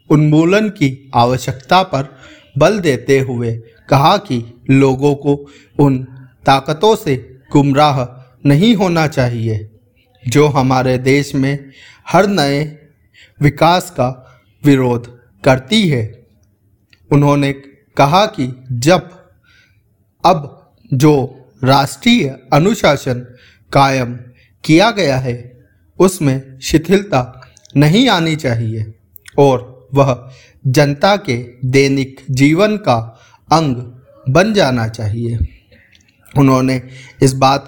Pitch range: 125-150 Hz